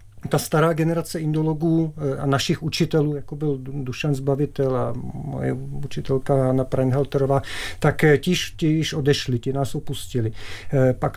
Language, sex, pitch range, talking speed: Czech, male, 135-160 Hz, 130 wpm